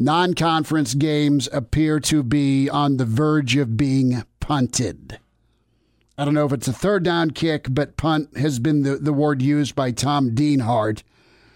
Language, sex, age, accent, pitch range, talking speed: English, male, 50-69, American, 130-155 Hz, 160 wpm